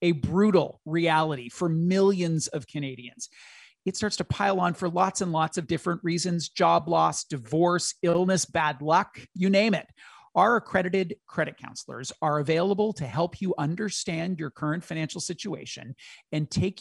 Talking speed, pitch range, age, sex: 155 wpm, 150-200 Hz, 40-59, male